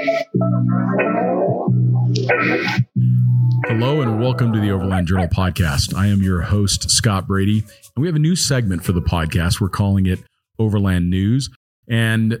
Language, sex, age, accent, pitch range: English, male, 40-59, American, 90-110 Hz